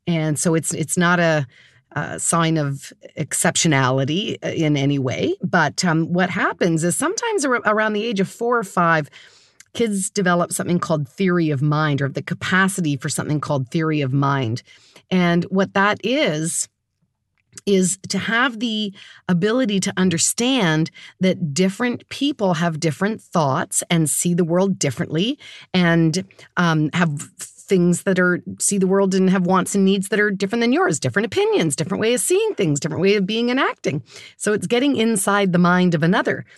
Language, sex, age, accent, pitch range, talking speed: English, female, 40-59, American, 155-200 Hz, 175 wpm